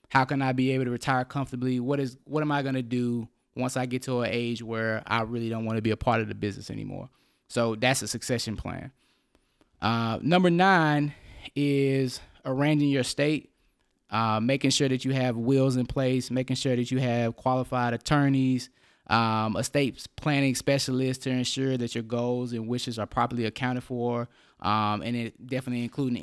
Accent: American